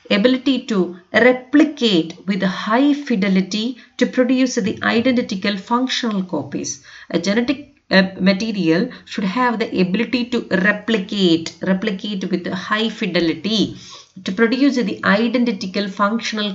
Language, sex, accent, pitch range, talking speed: English, female, Indian, 185-245 Hz, 110 wpm